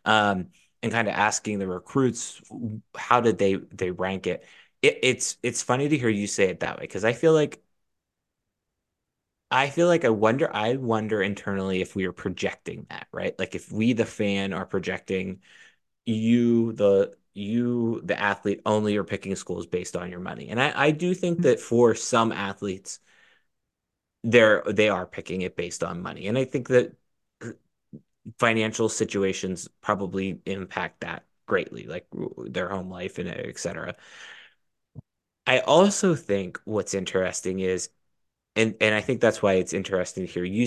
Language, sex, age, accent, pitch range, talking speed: English, male, 20-39, American, 95-120 Hz, 165 wpm